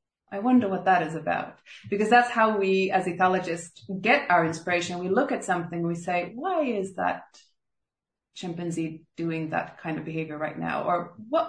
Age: 30-49